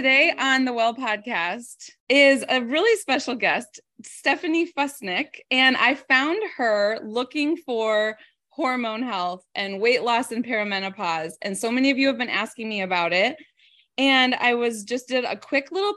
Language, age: English, 20-39